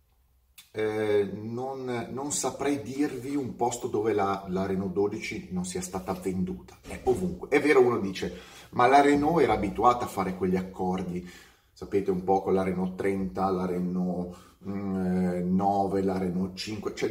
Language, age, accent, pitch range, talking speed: Italian, 30-49, native, 95-145 Hz, 160 wpm